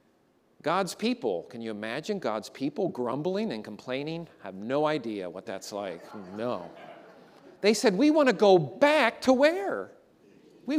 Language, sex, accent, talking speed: English, male, American, 155 wpm